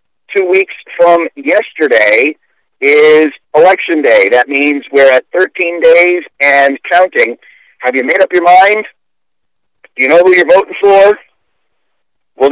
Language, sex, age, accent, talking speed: English, male, 60-79, American, 140 wpm